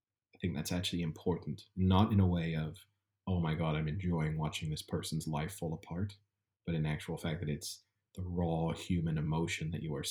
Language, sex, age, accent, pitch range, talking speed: English, male, 30-49, American, 80-100 Hz, 195 wpm